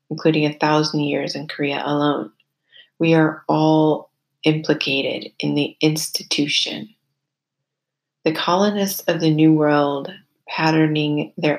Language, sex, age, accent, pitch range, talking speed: English, female, 30-49, American, 145-160 Hz, 115 wpm